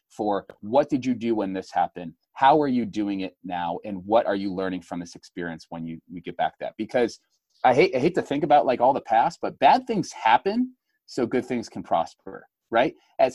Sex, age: male, 30-49